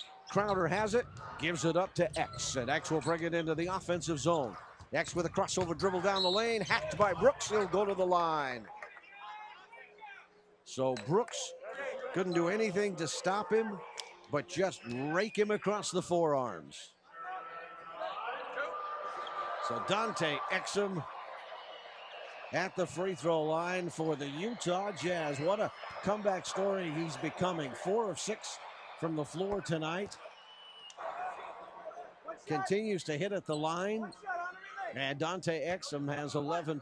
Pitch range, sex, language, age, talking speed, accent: 160-200 Hz, male, English, 50-69, 140 wpm, American